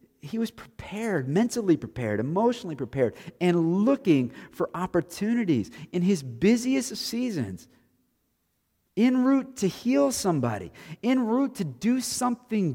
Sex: male